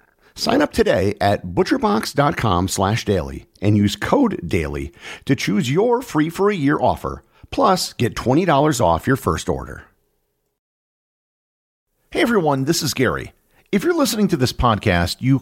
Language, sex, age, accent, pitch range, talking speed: English, male, 50-69, American, 95-145 Hz, 145 wpm